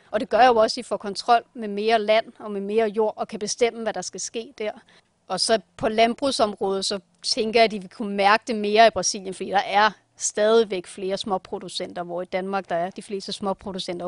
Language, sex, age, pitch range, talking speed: Danish, female, 30-49, 195-235 Hz, 235 wpm